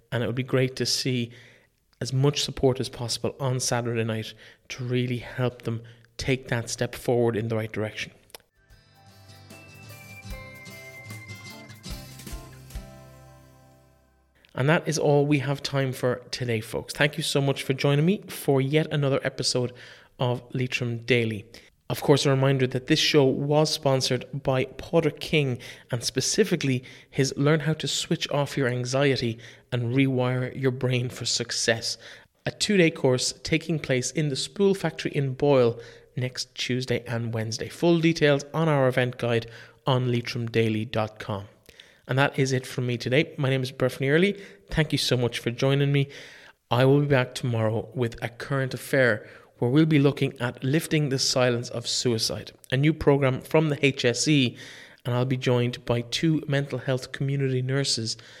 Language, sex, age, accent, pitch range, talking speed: English, male, 30-49, Irish, 115-140 Hz, 160 wpm